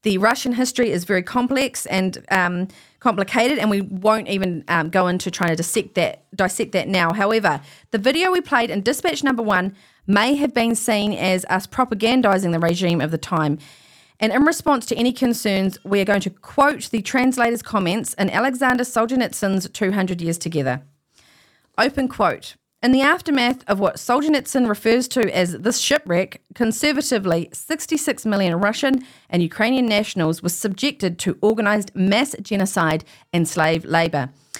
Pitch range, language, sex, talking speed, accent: 180-245 Hz, English, female, 160 wpm, Australian